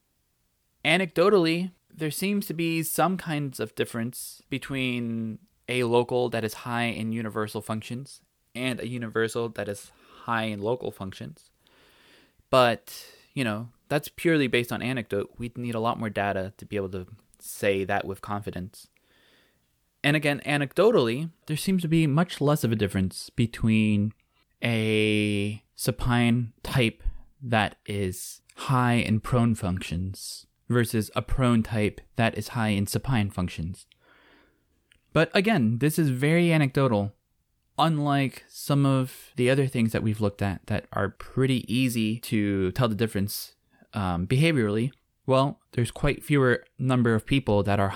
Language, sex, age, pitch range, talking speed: English, male, 20-39, 105-130 Hz, 145 wpm